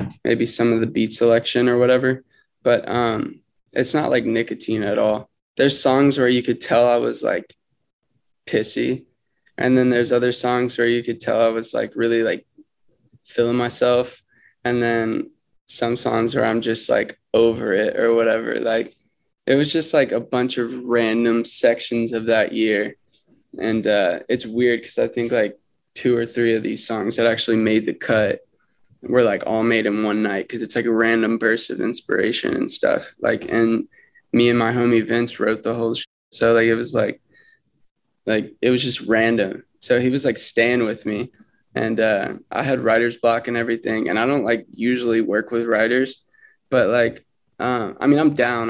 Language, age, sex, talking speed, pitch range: English, 20-39, male, 190 wpm, 115-125 Hz